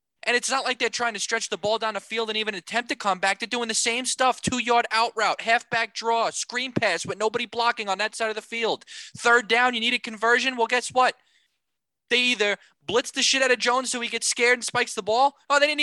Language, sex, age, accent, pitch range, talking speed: English, male, 20-39, American, 160-235 Hz, 260 wpm